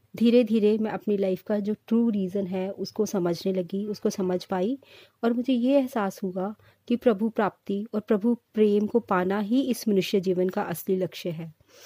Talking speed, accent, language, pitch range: 185 wpm, native, Hindi, 190-230 Hz